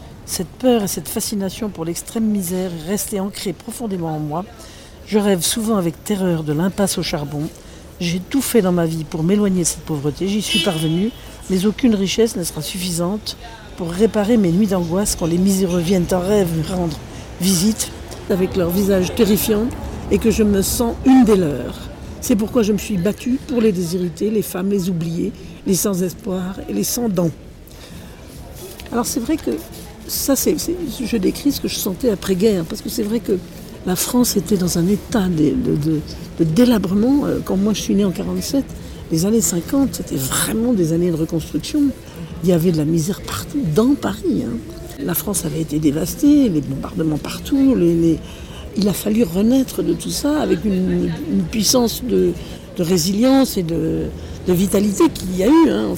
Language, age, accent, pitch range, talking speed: French, 50-69, French, 175-225 Hz, 190 wpm